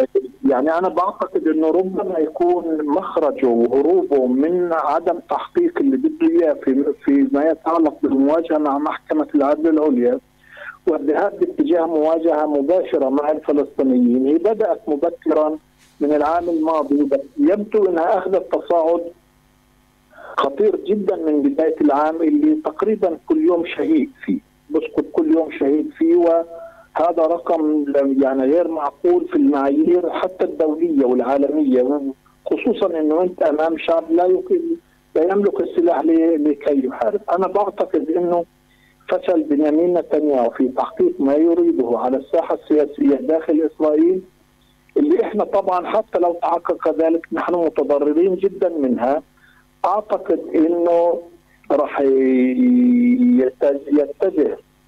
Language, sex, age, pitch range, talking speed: Arabic, male, 50-69, 150-250 Hz, 115 wpm